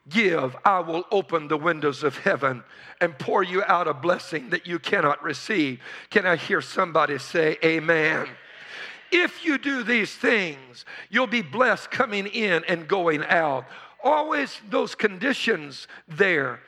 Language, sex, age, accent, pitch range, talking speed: English, male, 50-69, American, 160-225 Hz, 150 wpm